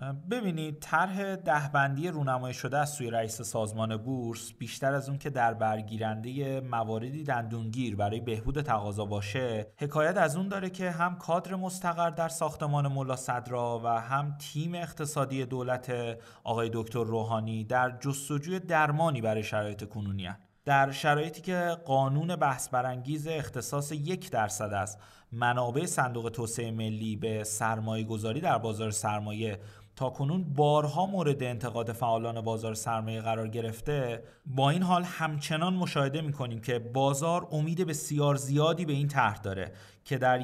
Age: 30-49